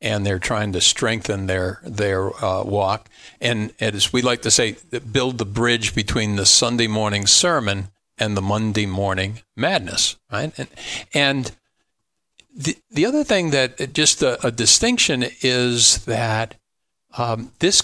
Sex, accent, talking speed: male, American, 150 wpm